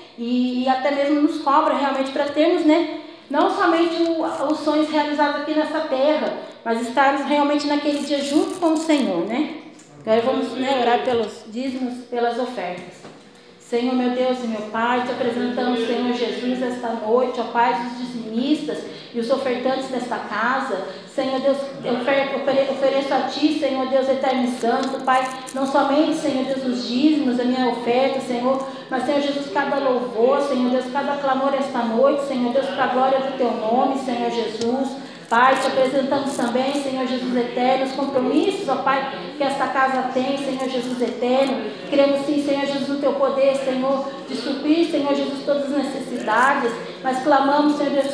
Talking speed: 170 wpm